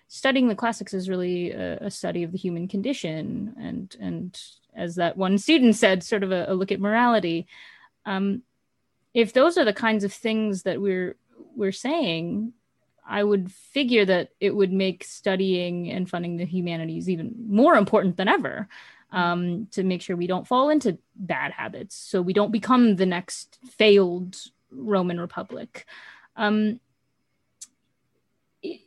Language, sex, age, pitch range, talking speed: English, female, 20-39, 180-225 Hz, 160 wpm